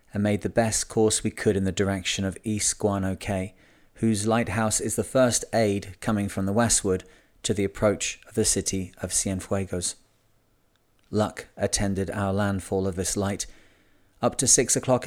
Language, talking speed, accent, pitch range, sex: English, 170 wpm, British, 100-115 Hz, male